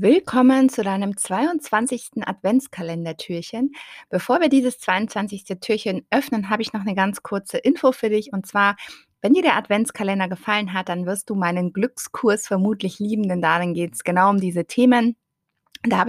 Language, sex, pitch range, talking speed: German, female, 180-225 Hz, 170 wpm